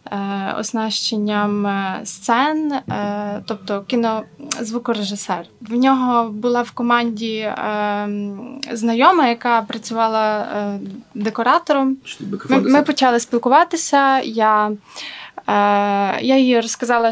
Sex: female